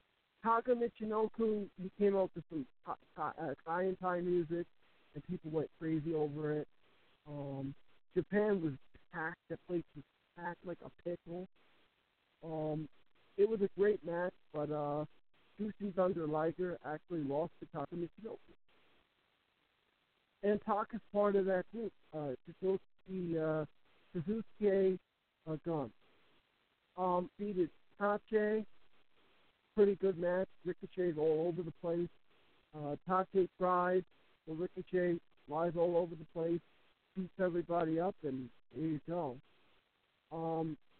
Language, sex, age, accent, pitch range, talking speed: English, male, 50-69, American, 155-195 Hz, 125 wpm